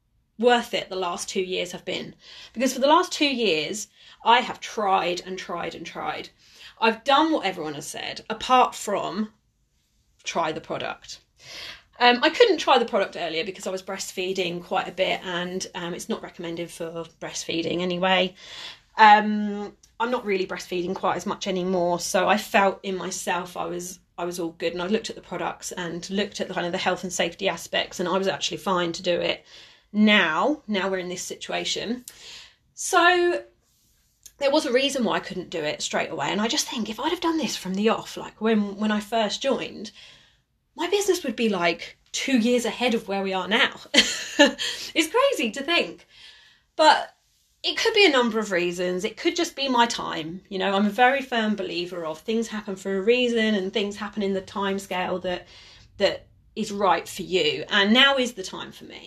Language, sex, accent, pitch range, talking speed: English, female, British, 180-245 Hz, 200 wpm